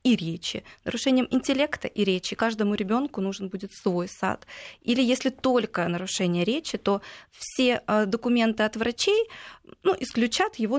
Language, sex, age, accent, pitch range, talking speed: Russian, female, 20-39, native, 200-265 Hz, 140 wpm